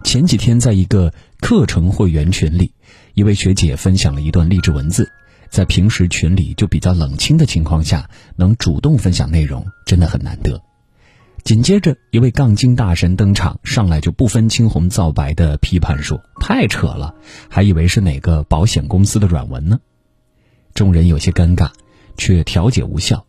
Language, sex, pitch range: Chinese, male, 85-115 Hz